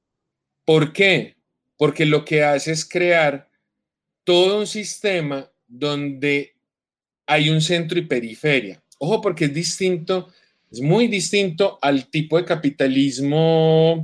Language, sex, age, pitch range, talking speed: Spanish, male, 30-49, 130-165 Hz, 120 wpm